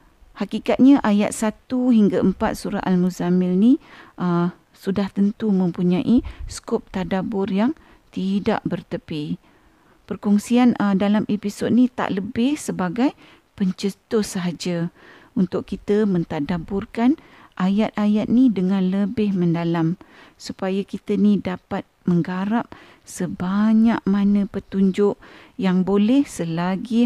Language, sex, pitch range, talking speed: Malay, female, 175-215 Hz, 100 wpm